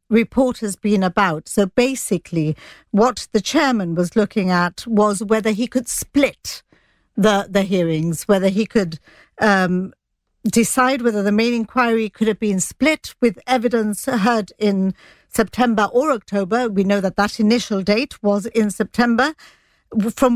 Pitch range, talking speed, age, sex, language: 200-250 Hz, 145 wpm, 50-69, female, English